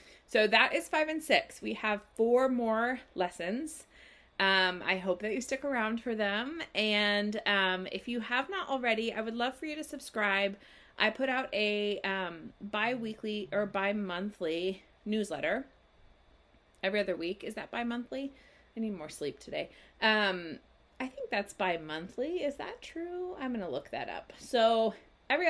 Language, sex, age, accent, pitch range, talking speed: English, female, 30-49, American, 195-255 Hz, 165 wpm